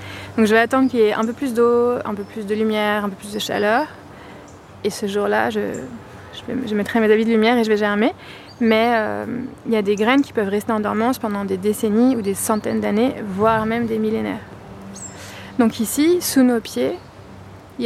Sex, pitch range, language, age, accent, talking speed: female, 205-235 Hz, English, 20-39, French, 215 wpm